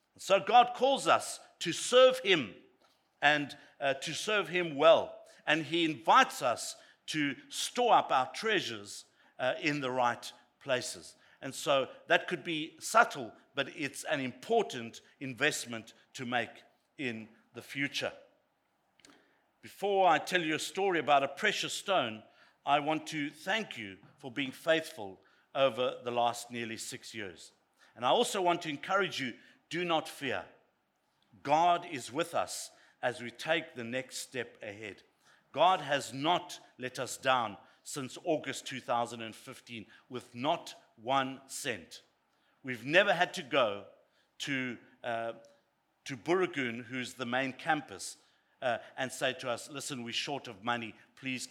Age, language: 50-69, English